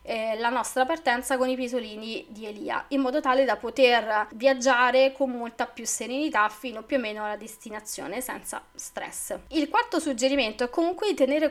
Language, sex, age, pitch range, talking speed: Italian, female, 20-39, 230-280 Hz, 175 wpm